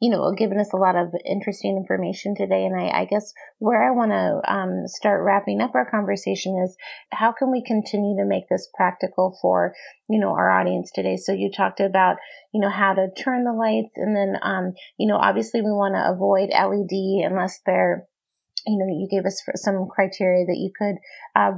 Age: 30-49